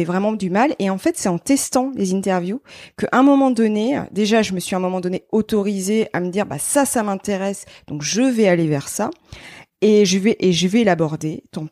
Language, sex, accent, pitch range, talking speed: French, female, French, 185-230 Hz, 230 wpm